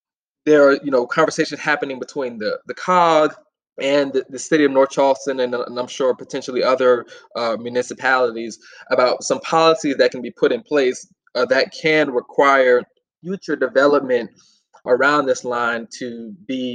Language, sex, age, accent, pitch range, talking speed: English, male, 20-39, American, 125-170 Hz, 160 wpm